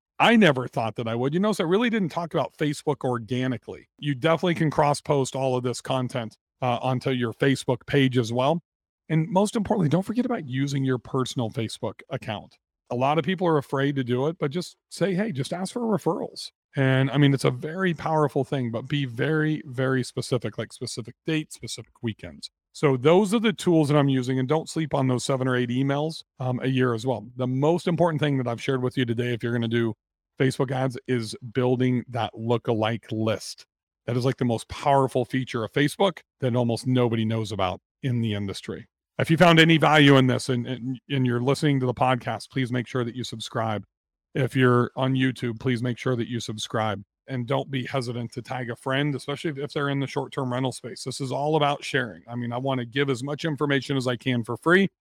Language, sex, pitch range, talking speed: English, male, 120-150 Hz, 225 wpm